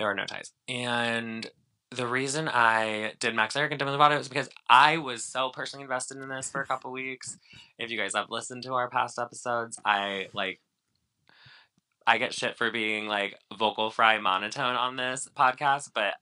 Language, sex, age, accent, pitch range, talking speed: English, male, 20-39, American, 110-135 Hz, 190 wpm